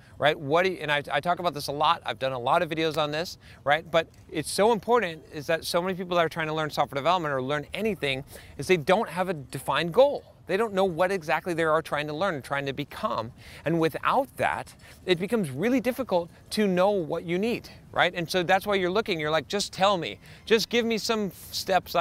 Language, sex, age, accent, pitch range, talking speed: English, male, 30-49, American, 145-190 Hz, 245 wpm